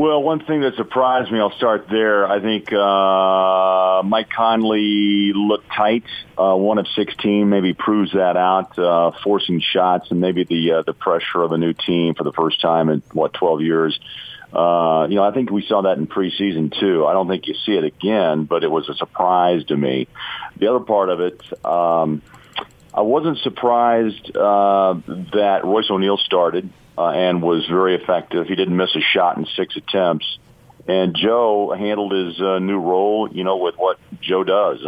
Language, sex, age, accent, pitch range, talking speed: English, male, 40-59, American, 90-105 Hz, 190 wpm